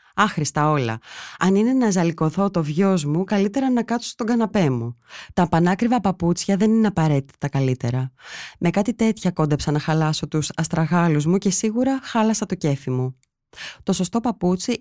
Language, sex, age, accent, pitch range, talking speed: Greek, female, 20-39, native, 155-215 Hz, 160 wpm